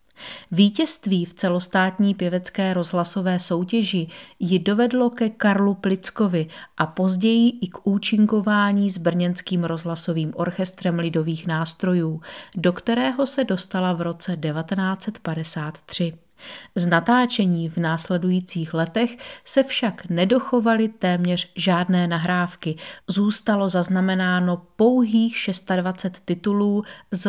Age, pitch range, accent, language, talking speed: 30-49, 170-205 Hz, native, Czech, 100 wpm